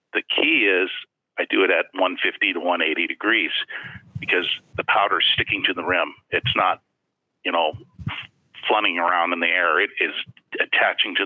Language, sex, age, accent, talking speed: English, male, 50-69, American, 165 wpm